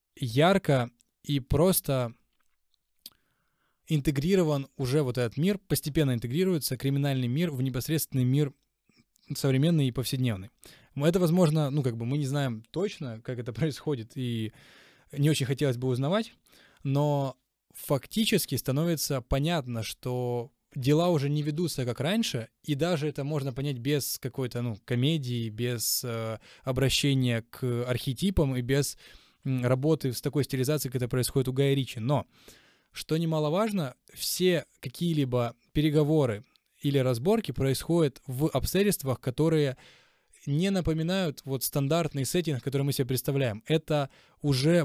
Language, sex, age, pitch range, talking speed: Ukrainian, male, 20-39, 130-155 Hz, 125 wpm